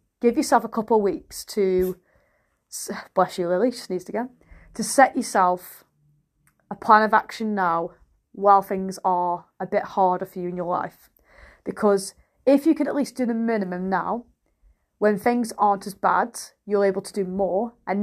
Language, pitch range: English, 190-235 Hz